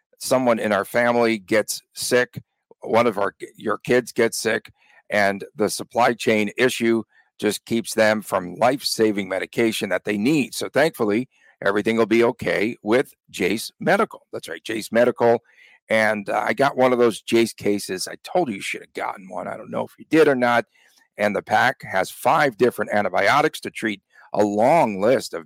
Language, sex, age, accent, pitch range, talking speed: English, male, 50-69, American, 105-120 Hz, 185 wpm